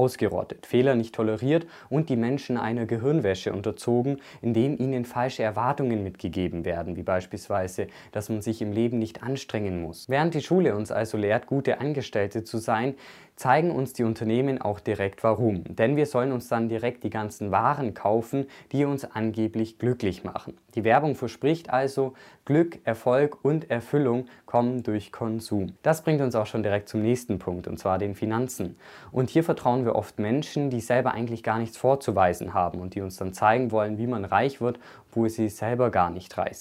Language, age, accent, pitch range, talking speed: German, 20-39, German, 105-130 Hz, 180 wpm